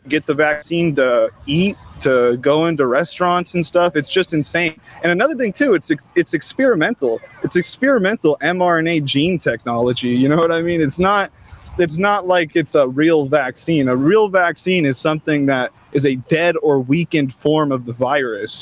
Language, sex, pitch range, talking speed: English, male, 135-170 Hz, 175 wpm